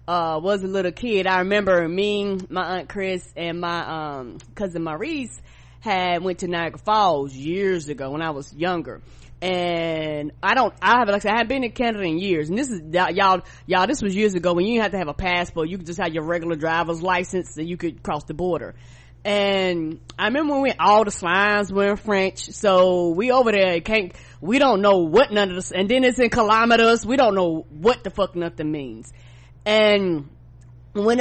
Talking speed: 220 wpm